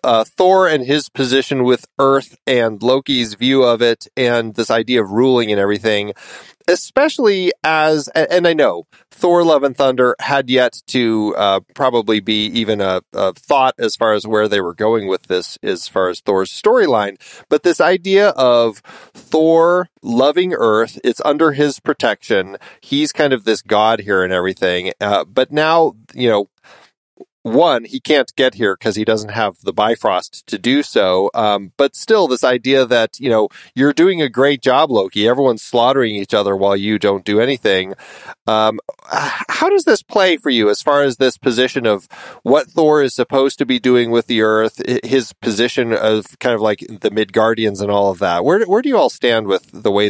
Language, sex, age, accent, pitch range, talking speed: English, male, 30-49, American, 110-145 Hz, 190 wpm